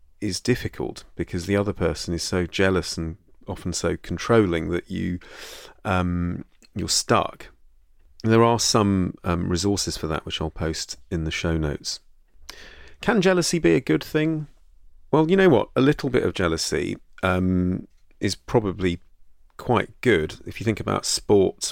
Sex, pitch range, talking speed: male, 80-100 Hz, 155 wpm